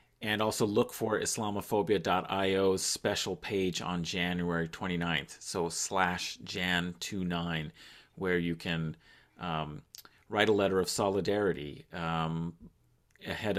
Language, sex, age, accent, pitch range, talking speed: English, male, 40-59, American, 85-100 Hz, 105 wpm